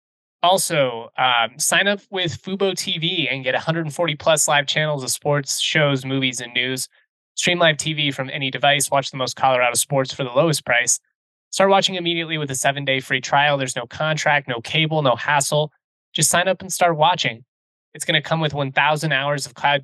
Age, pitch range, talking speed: 20-39, 135-160 Hz, 190 wpm